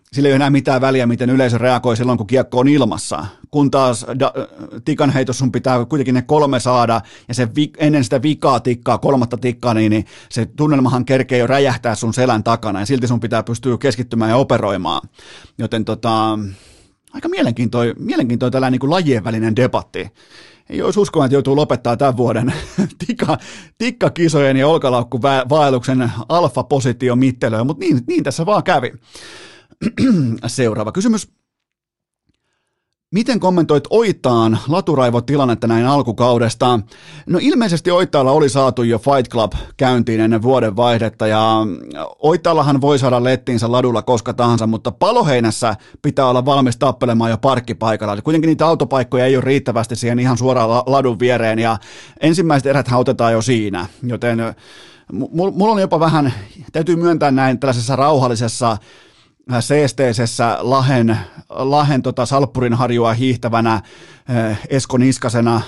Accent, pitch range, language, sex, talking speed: native, 120-140 Hz, Finnish, male, 140 wpm